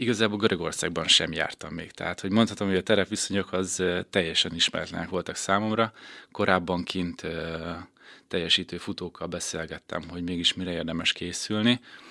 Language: Hungarian